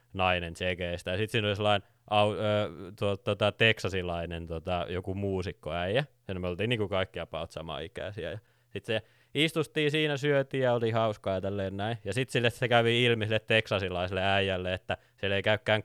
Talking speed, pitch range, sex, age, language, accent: 170 wpm, 90-115 Hz, male, 20-39, Finnish, native